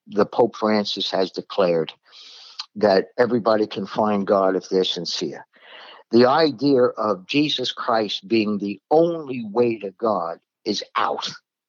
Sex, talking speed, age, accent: male, 135 wpm, 50-69, American